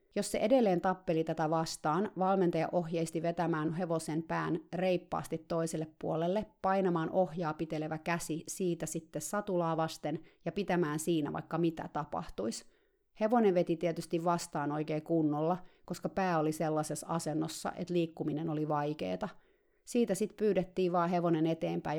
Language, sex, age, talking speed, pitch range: Finnish, female, 30-49, 135 wpm, 160-185 Hz